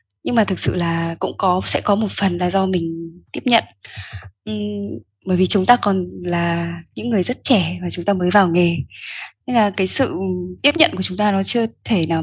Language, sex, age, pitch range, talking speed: Vietnamese, female, 10-29, 170-220 Hz, 225 wpm